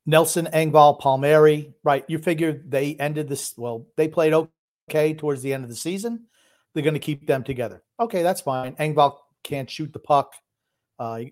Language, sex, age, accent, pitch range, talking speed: English, male, 50-69, American, 125-155 Hz, 180 wpm